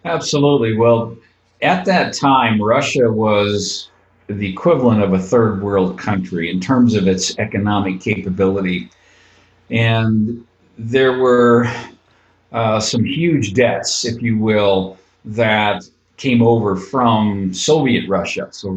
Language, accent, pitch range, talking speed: English, American, 100-120 Hz, 120 wpm